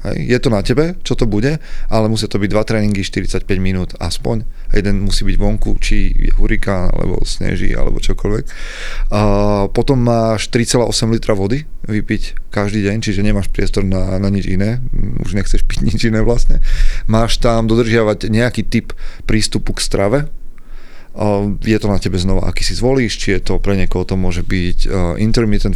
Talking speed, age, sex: 175 wpm, 30-49, male